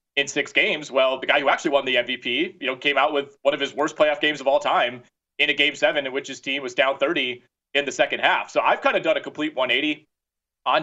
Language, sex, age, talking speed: English, male, 30-49, 270 wpm